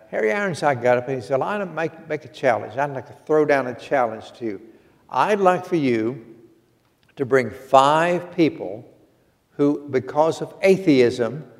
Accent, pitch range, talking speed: American, 120-150 Hz, 180 wpm